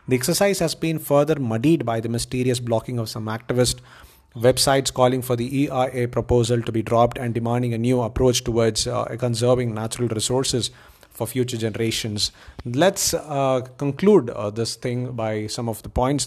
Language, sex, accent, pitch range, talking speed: English, male, Indian, 115-135 Hz, 170 wpm